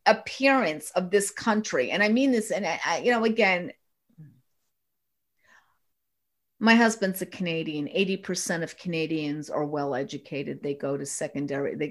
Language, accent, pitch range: English, American, 145-185 Hz